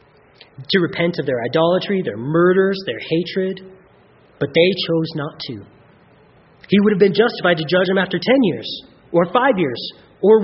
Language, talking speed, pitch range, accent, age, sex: English, 165 wpm, 135-180 Hz, American, 30-49, male